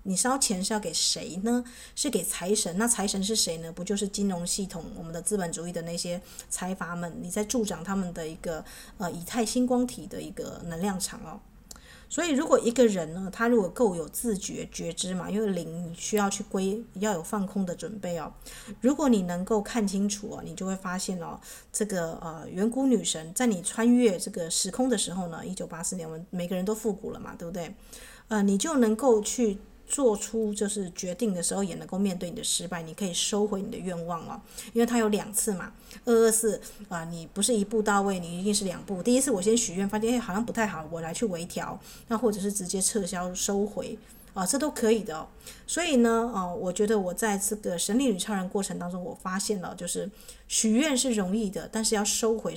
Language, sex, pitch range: Chinese, female, 180-225 Hz